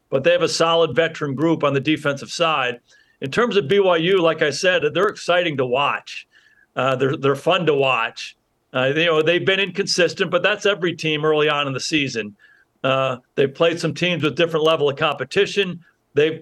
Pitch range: 150-175 Hz